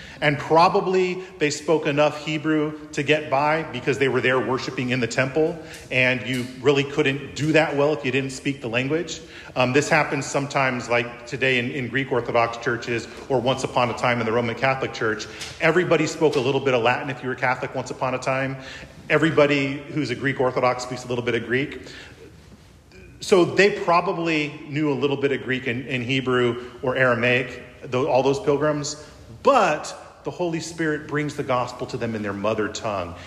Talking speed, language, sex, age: 195 wpm, English, male, 40-59